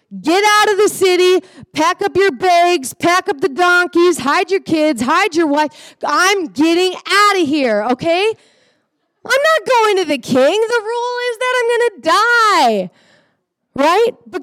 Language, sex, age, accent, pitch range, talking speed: English, female, 20-39, American, 265-370 Hz, 170 wpm